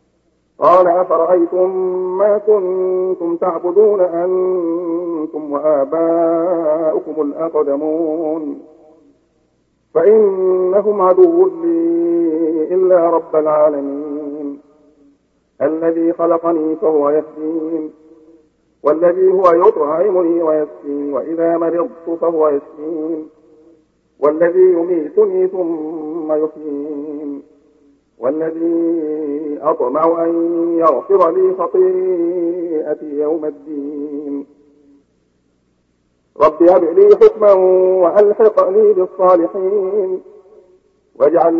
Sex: male